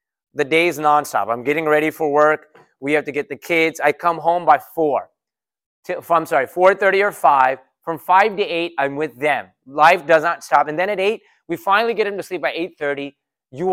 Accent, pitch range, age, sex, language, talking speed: American, 130-185 Hz, 30-49, male, English, 215 wpm